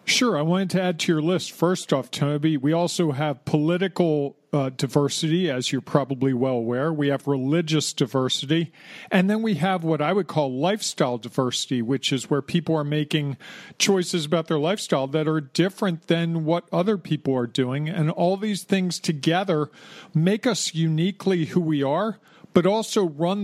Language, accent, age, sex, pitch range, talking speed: English, American, 40-59, male, 155-190 Hz, 175 wpm